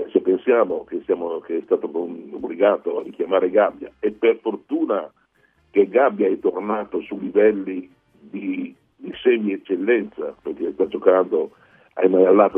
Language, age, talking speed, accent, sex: Italian, 50-69, 135 wpm, native, male